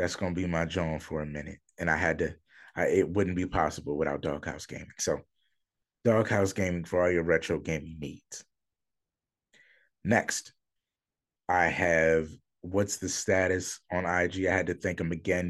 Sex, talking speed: male, 170 wpm